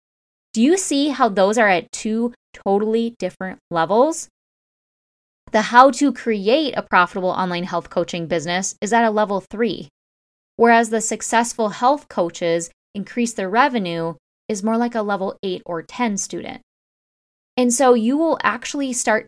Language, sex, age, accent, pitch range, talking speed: English, female, 10-29, American, 205-280 Hz, 155 wpm